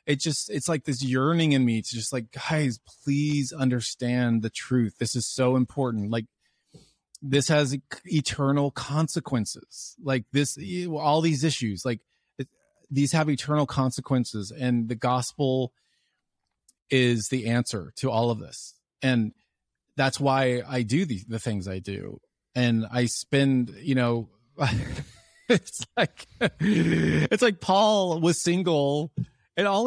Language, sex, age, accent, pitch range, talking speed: English, male, 30-49, American, 120-160 Hz, 140 wpm